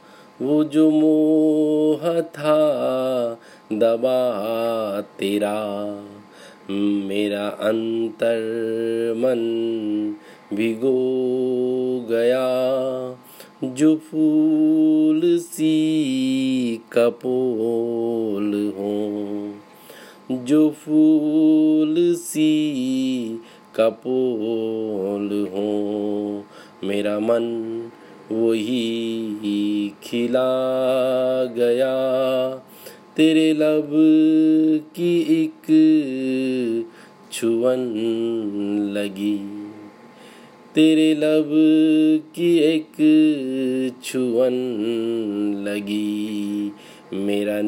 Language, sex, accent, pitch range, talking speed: Hindi, male, native, 110-155 Hz, 45 wpm